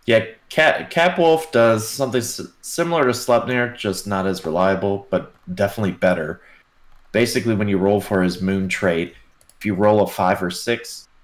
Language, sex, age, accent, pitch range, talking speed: English, male, 30-49, American, 95-115 Hz, 160 wpm